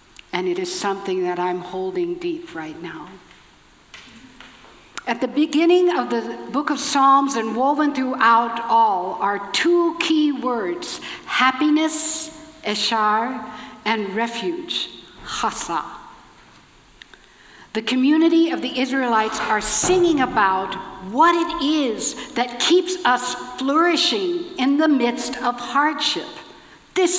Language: English